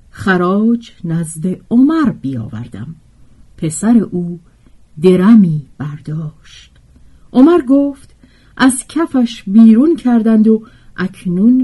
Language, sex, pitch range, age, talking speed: Persian, female, 150-235 Hz, 50-69, 80 wpm